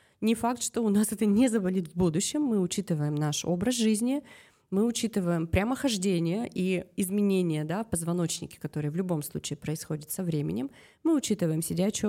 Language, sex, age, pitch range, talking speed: Russian, female, 20-39, 160-205 Hz, 160 wpm